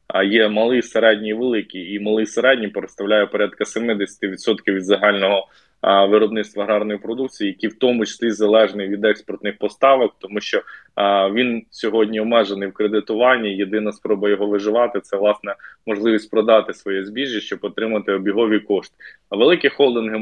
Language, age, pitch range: Ukrainian, 20-39, 100-115 Hz